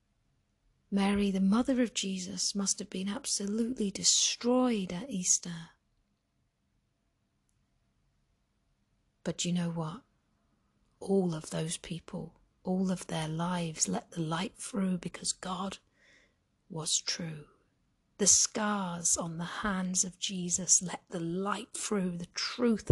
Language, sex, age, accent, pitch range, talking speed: English, female, 40-59, British, 175-215 Hz, 120 wpm